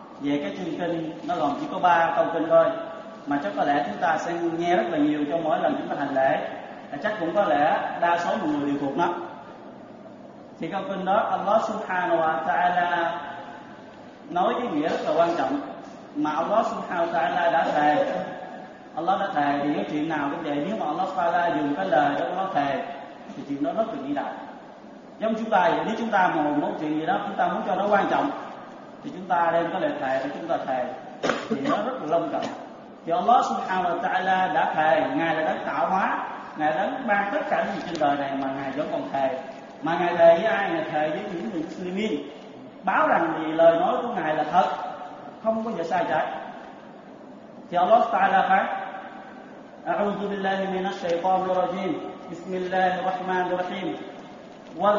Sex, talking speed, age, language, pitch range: male, 205 wpm, 20-39, Vietnamese, 160-205 Hz